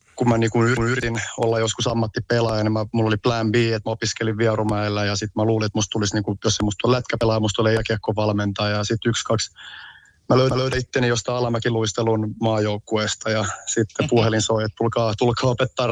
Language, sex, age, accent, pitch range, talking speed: Finnish, male, 30-49, native, 110-120 Hz, 210 wpm